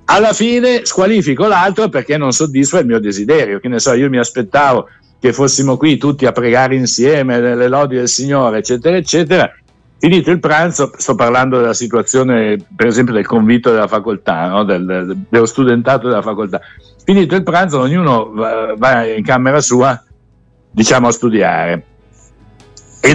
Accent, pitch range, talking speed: native, 110-150 Hz, 155 wpm